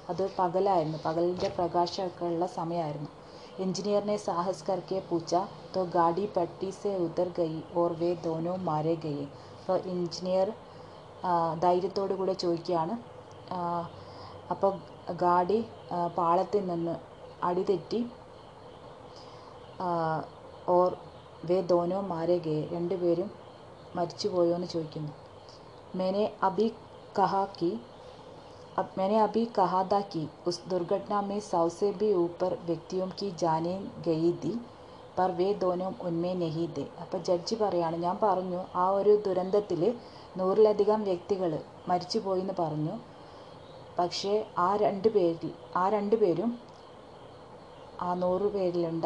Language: Hindi